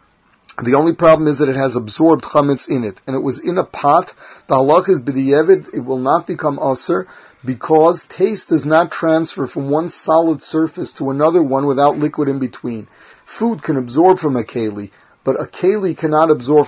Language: English